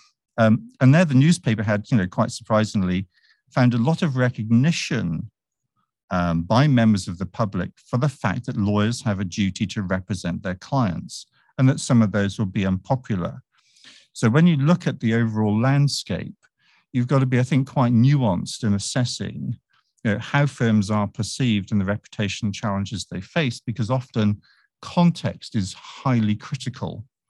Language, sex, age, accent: English, male, 50-69, British